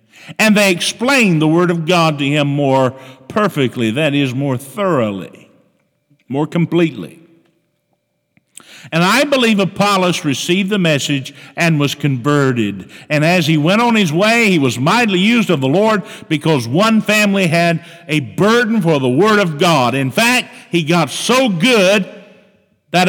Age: 50-69